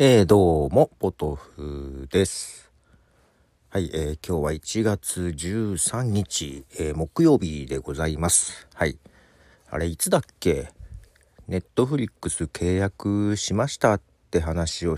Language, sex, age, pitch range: Japanese, male, 50-69, 75-105 Hz